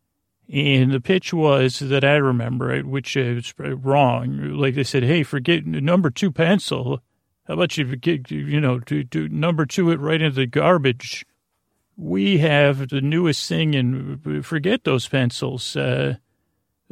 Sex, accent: male, American